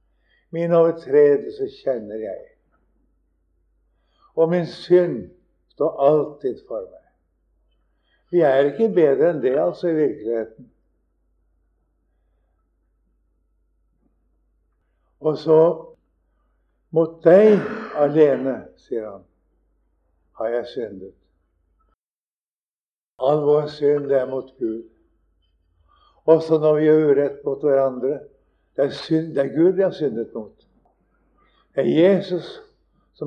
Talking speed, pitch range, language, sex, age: 105 wpm, 115-170 Hz, English, male, 60-79